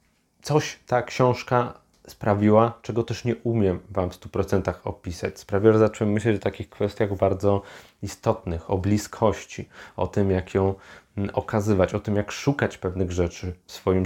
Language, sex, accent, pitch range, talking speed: Polish, male, native, 95-105 Hz, 160 wpm